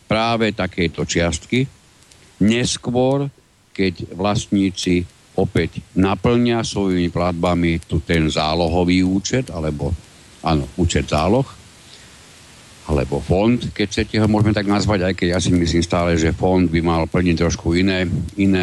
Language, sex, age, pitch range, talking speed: Slovak, male, 50-69, 85-105 Hz, 120 wpm